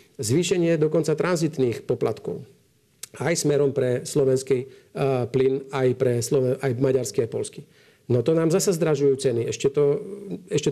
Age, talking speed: 50-69, 120 wpm